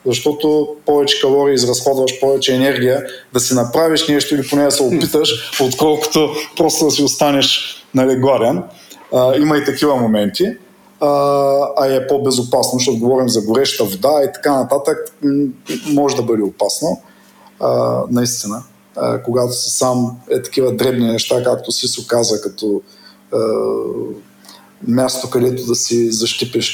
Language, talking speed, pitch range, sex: Bulgarian, 140 wpm, 120-145 Hz, male